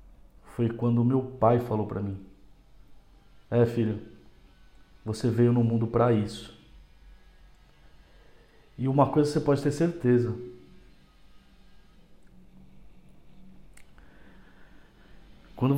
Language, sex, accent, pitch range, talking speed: Portuguese, male, Brazilian, 100-125 Hz, 90 wpm